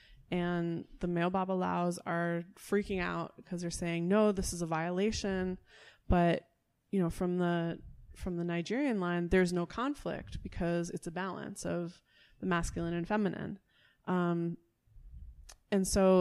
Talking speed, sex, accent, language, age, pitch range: 150 wpm, female, American, English, 20-39, 170-190 Hz